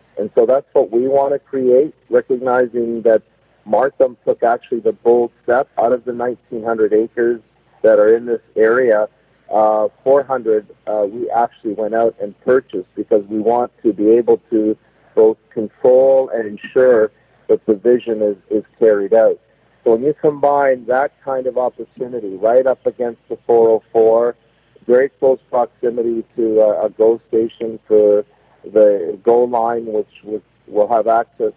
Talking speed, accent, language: 160 wpm, American, English